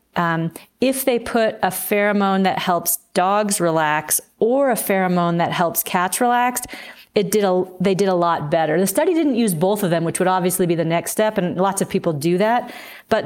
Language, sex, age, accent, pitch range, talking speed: English, female, 30-49, American, 175-220 Hz, 210 wpm